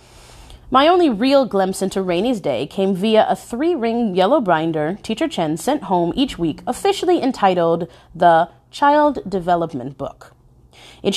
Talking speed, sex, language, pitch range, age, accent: 140 wpm, female, English, 165-255 Hz, 30-49, American